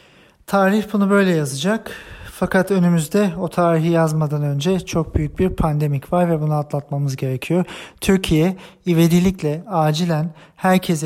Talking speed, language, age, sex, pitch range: 125 wpm, German, 40-59, male, 150-180 Hz